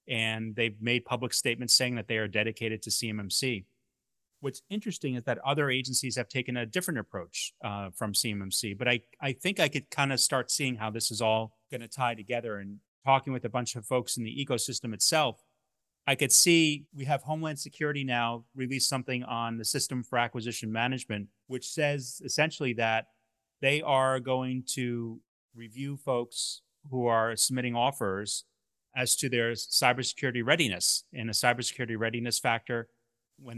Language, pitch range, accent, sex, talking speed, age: English, 115-135 Hz, American, male, 170 wpm, 30-49